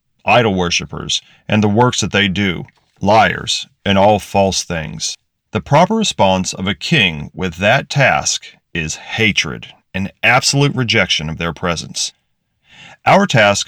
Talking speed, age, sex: 140 wpm, 40-59, male